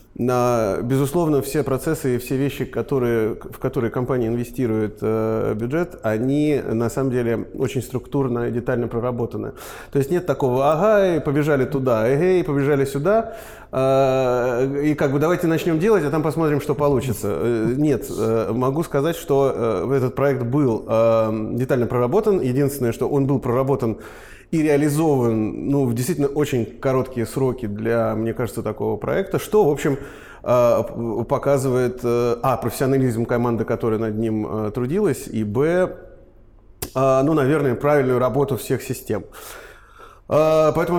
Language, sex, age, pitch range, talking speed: Russian, male, 20-39, 120-150 Hz, 135 wpm